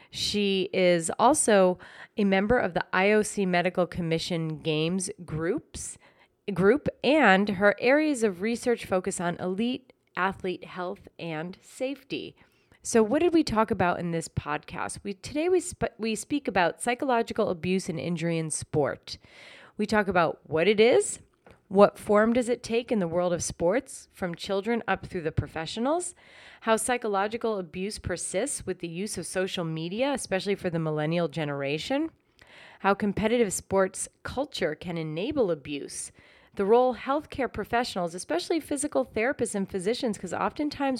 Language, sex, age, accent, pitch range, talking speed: English, female, 30-49, American, 175-235 Hz, 150 wpm